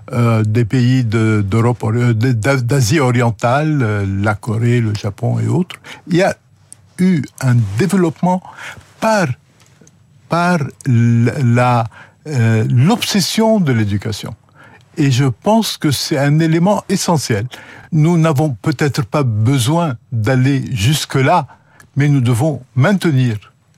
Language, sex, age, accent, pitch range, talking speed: French, male, 60-79, French, 120-160 Hz, 110 wpm